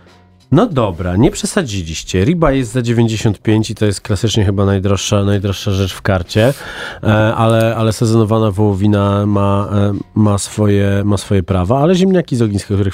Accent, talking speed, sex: native, 160 wpm, male